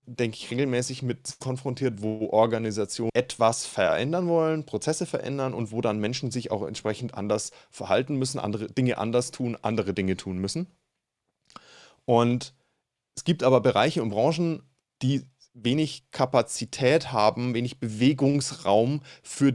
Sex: male